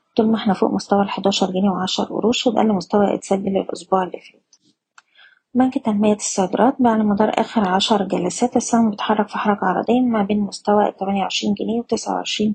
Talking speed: 160 wpm